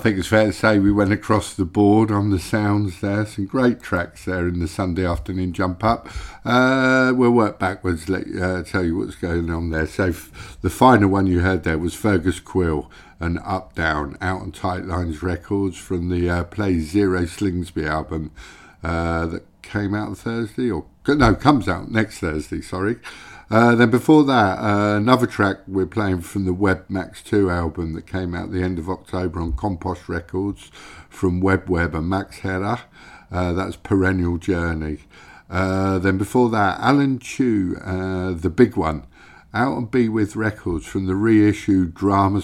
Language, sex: English, male